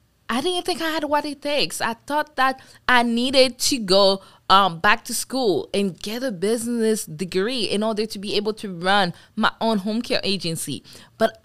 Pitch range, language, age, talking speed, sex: 180-240 Hz, English, 20-39, 195 wpm, female